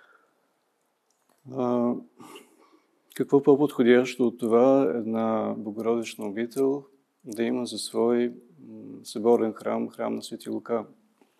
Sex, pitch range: male, 105-120 Hz